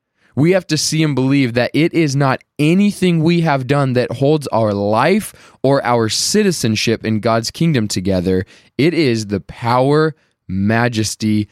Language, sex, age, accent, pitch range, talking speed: English, male, 20-39, American, 105-155 Hz, 155 wpm